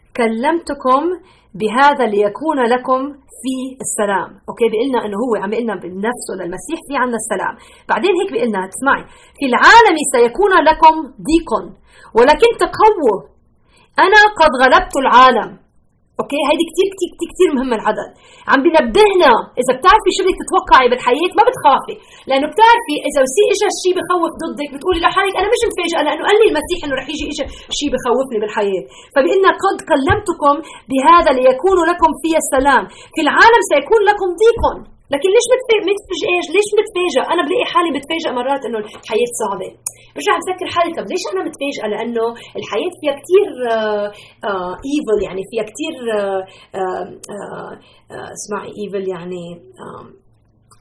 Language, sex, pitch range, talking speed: Arabic, female, 220-370 Hz, 150 wpm